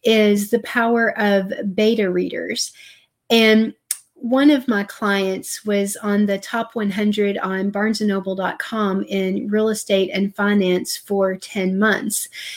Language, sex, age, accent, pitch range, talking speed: English, female, 30-49, American, 195-230 Hz, 125 wpm